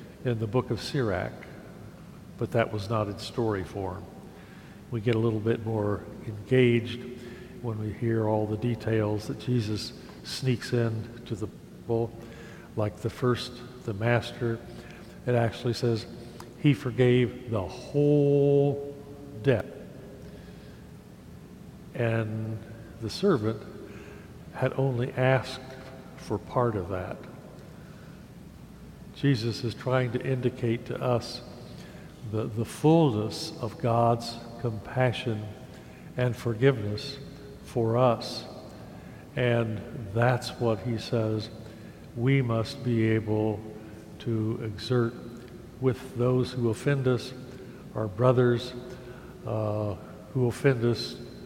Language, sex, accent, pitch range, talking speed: English, male, American, 110-125 Hz, 110 wpm